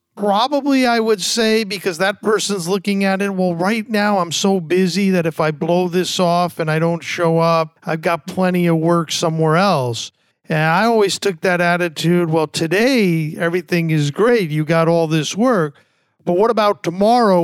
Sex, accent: male, American